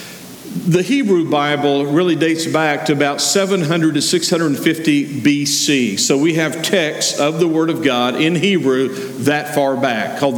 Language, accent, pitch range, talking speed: English, American, 145-175 Hz, 155 wpm